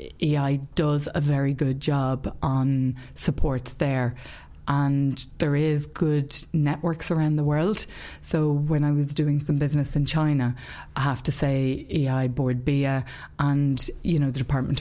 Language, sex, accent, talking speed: English, female, Irish, 155 wpm